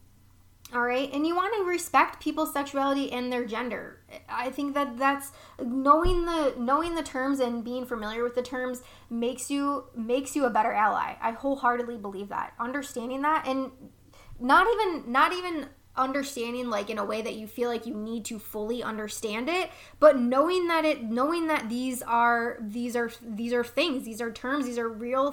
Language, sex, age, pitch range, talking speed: English, female, 10-29, 230-275 Hz, 185 wpm